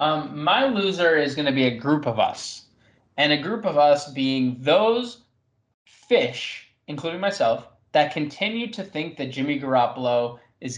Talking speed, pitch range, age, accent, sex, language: 160 wpm, 120-165 Hz, 20-39, American, male, English